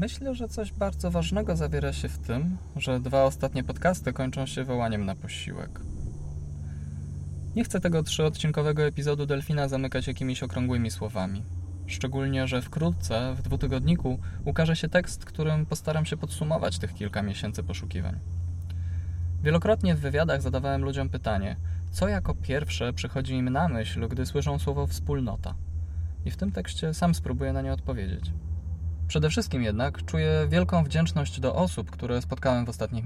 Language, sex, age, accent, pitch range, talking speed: Polish, male, 20-39, native, 80-130 Hz, 150 wpm